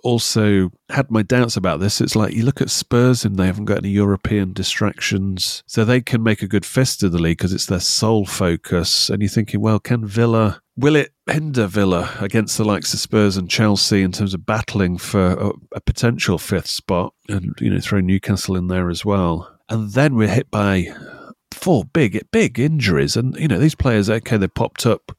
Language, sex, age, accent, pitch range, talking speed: English, male, 30-49, British, 95-115 Hz, 210 wpm